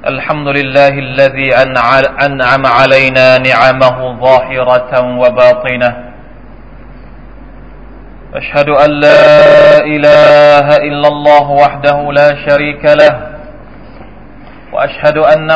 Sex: male